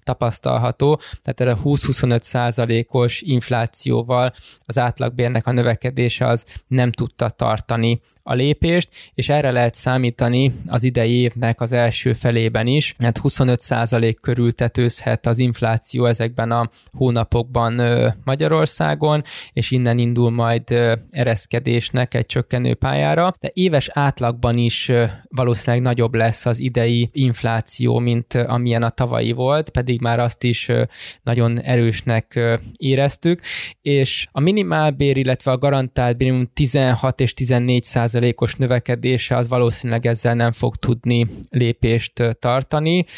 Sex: male